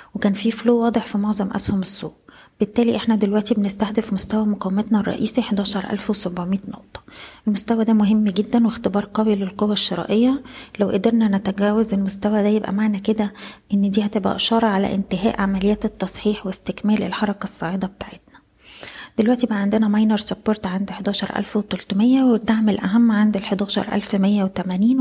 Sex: female